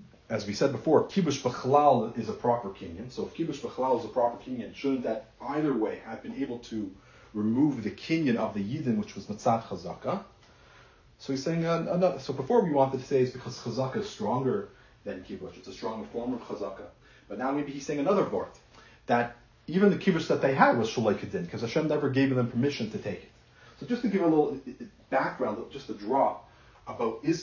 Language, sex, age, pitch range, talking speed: English, male, 30-49, 120-150 Hz, 210 wpm